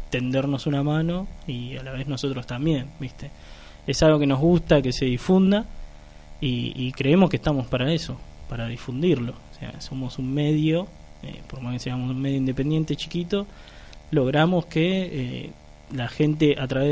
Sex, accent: male, Argentinian